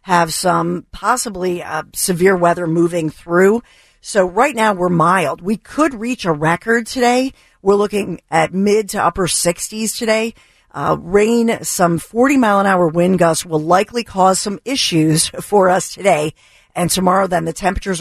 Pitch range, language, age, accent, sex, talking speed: 165-200 Hz, English, 50-69, American, female, 155 wpm